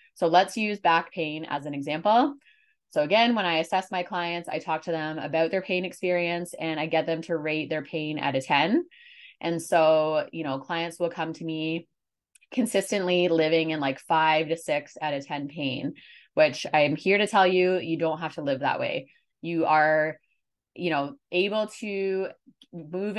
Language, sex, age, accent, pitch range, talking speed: English, female, 20-39, American, 155-190 Hz, 190 wpm